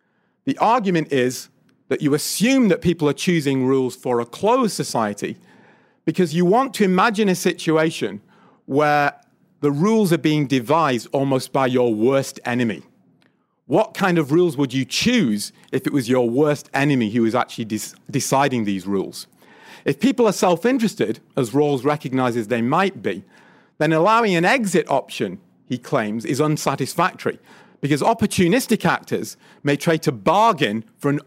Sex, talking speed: male, 155 wpm